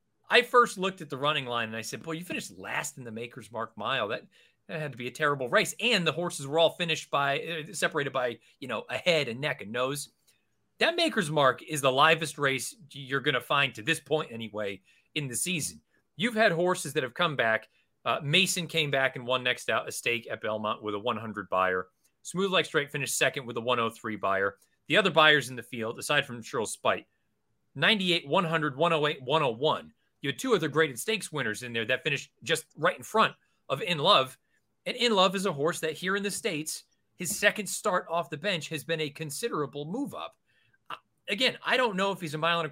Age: 30-49